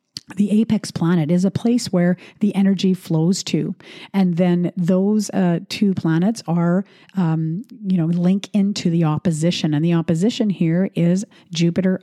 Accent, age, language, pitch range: American, 50-69, English, 165-205 Hz